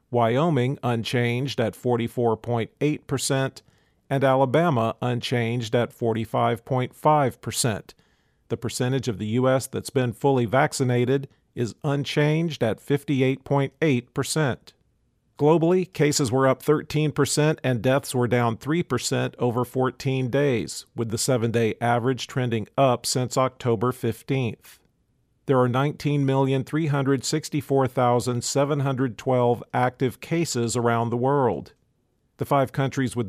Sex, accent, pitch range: male, American, 120-140 Hz